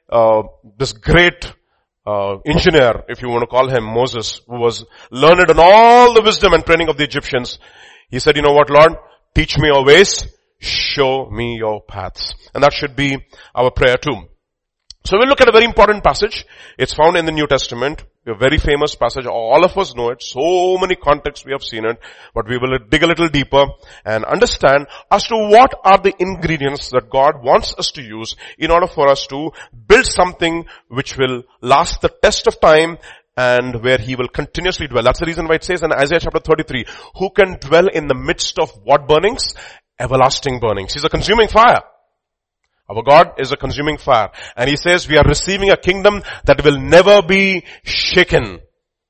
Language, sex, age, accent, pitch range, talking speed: English, male, 40-59, Indian, 130-190 Hz, 195 wpm